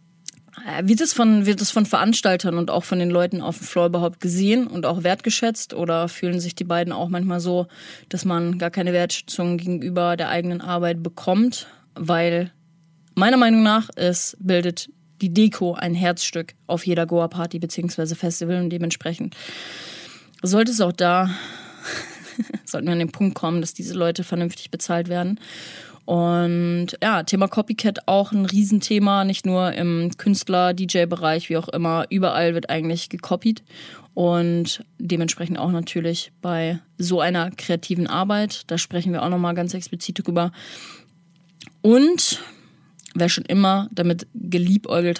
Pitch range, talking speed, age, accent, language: 170-195 Hz, 145 wpm, 20-39, German, German